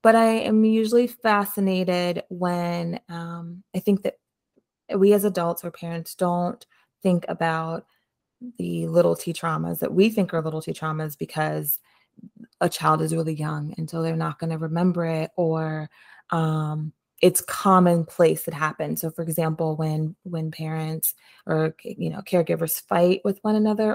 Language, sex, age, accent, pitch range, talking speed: English, female, 20-39, American, 160-180 Hz, 155 wpm